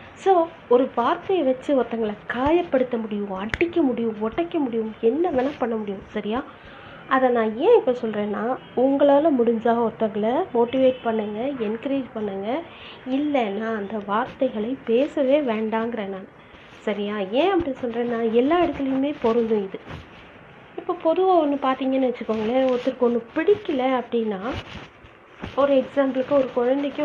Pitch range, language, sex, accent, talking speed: 225-280 Hz, Tamil, female, native, 120 wpm